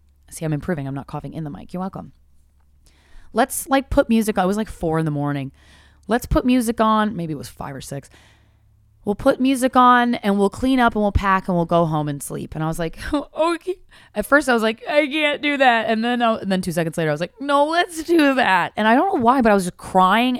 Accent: American